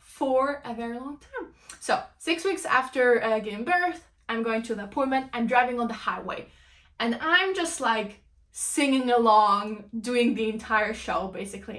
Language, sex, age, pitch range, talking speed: English, female, 10-29, 225-300 Hz, 170 wpm